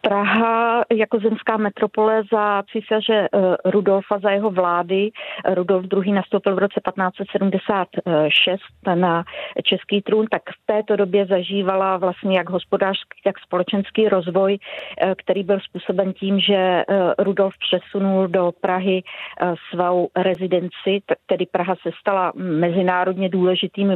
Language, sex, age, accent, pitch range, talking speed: Czech, female, 40-59, native, 185-205 Hz, 120 wpm